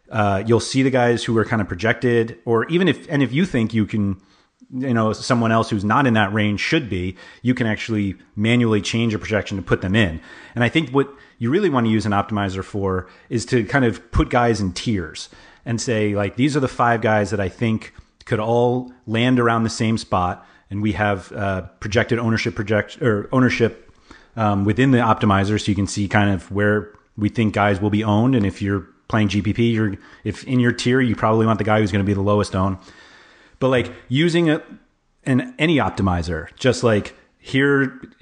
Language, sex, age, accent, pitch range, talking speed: English, male, 30-49, American, 100-125 Hz, 215 wpm